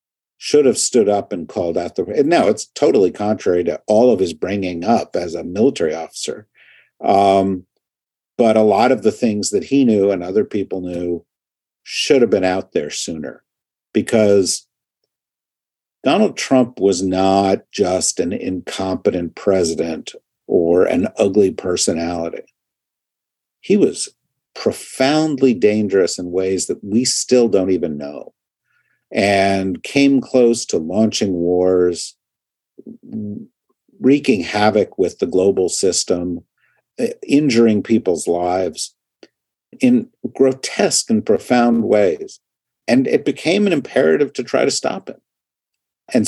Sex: male